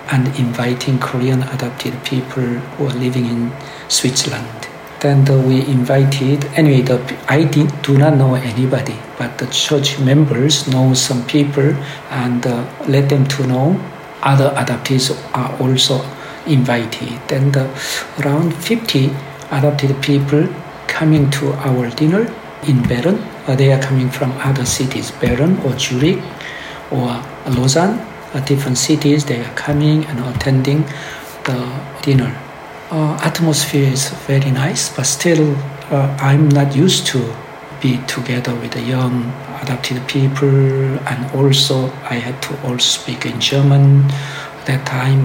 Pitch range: 130-145 Hz